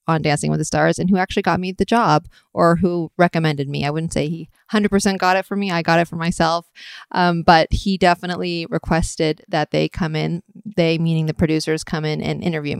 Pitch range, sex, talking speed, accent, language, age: 165-200 Hz, female, 220 wpm, American, English, 20-39